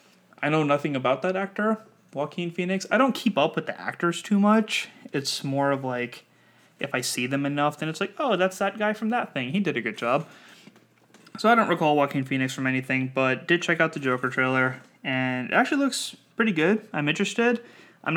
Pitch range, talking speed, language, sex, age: 130-190 Hz, 215 wpm, English, male, 20-39